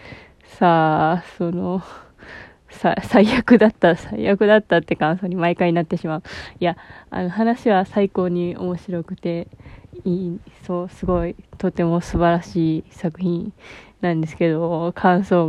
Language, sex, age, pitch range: Japanese, female, 20-39, 170-190 Hz